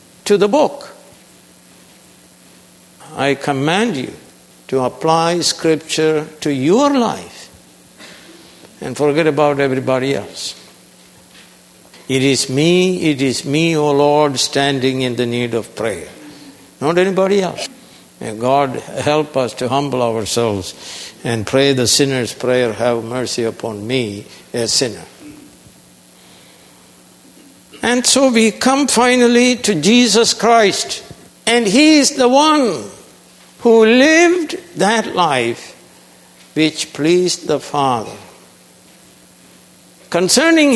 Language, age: English, 60-79